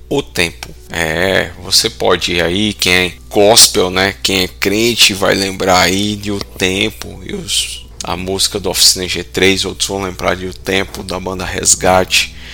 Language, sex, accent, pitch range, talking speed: Portuguese, male, Brazilian, 85-110 Hz, 170 wpm